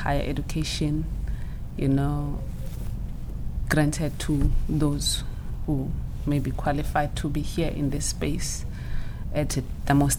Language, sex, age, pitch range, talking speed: English, female, 30-49, 130-150 Hz, 120 wpm